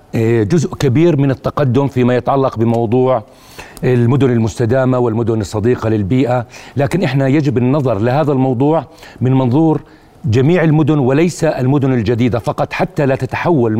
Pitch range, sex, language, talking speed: 120-145 Hz, male, Arabic, 125 wpm